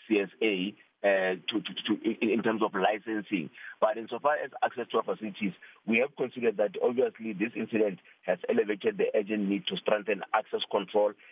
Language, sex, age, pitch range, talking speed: English, male, 50-69, 105-125 Hz, 155 wpm